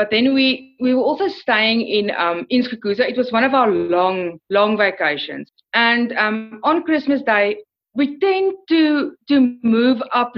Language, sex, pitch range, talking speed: English, female, 215-275 Hz, 175 wpm